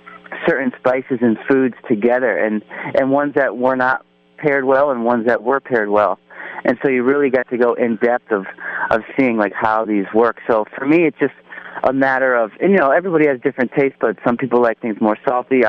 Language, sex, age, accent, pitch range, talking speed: English, male, 40-59, American, 105-130 Hz, 220 wpm